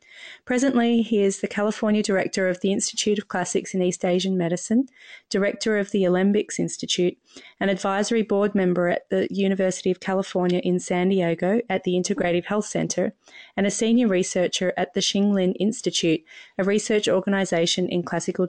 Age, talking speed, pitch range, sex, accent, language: 30-49, 165 wpm, 180-215 Hz, female, Australian, English